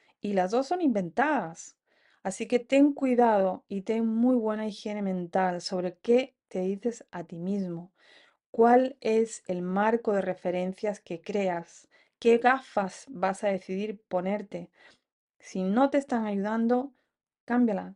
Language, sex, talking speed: English, female, 140 wpm